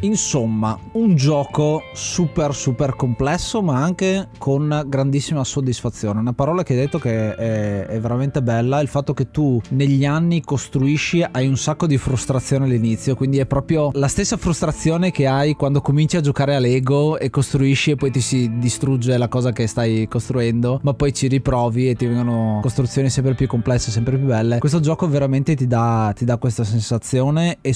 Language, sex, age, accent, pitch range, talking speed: Italian, male, 20-39, native, 120-145 Hz, 180 wpm